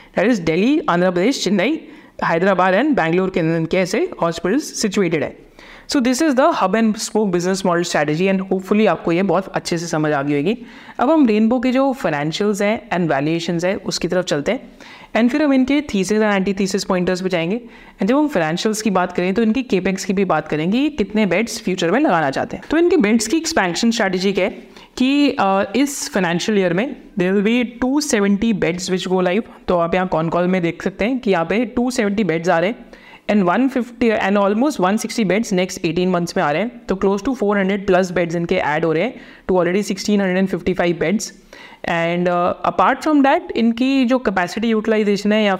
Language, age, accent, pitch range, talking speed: Hindi, 30-49, native, 180-240 Hz, 205 wpm